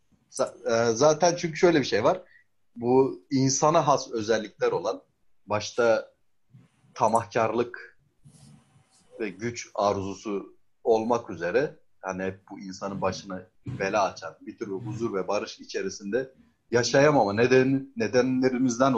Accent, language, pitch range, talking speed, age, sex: native, Turkish, 115-155 Hz, 105 wpm, 30-49, male